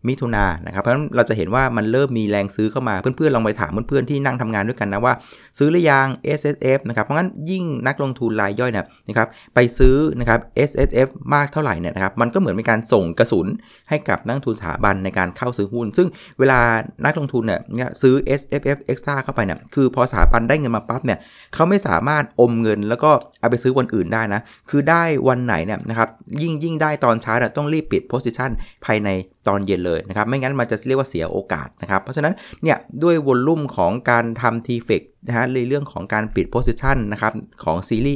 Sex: male